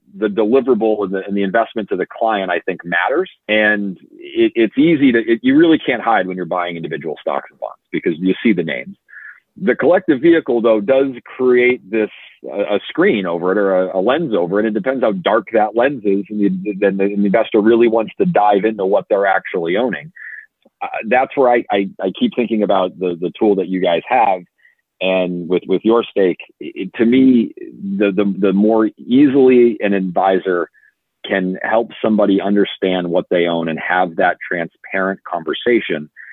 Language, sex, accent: English, male, American